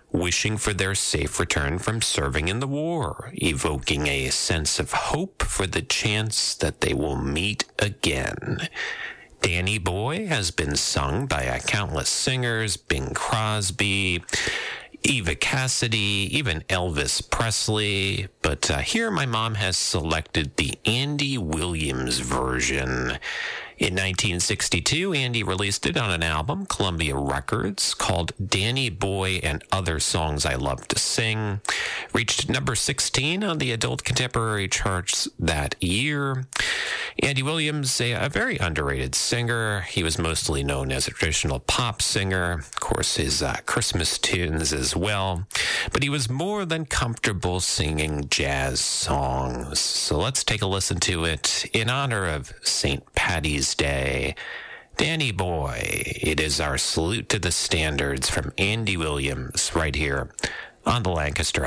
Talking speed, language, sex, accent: 135 wpm, English, male, American